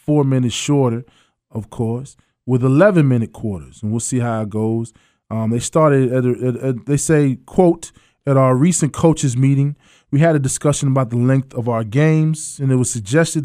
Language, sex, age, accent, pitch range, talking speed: English, male, 20-39, American, 120-145 Hz, 190 wpm